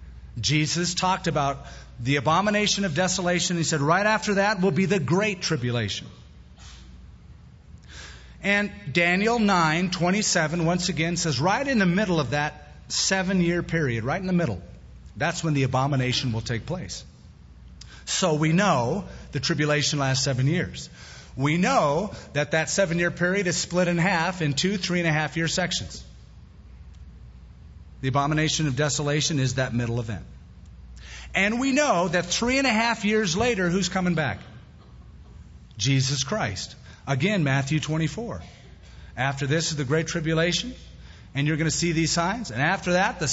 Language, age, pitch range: English, 40-59, 115-180 Hz